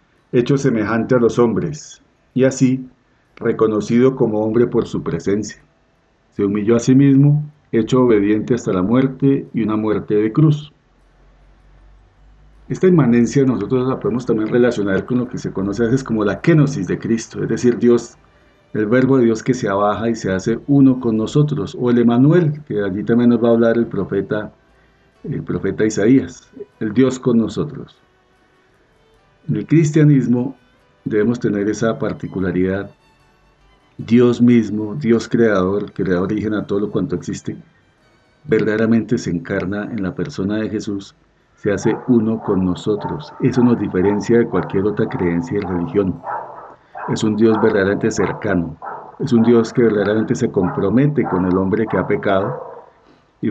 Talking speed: 160 wpm